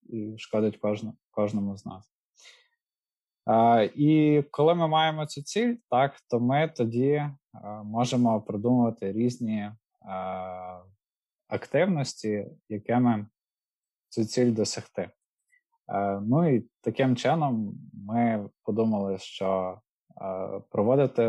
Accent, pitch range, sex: native, 100-120 Hz, male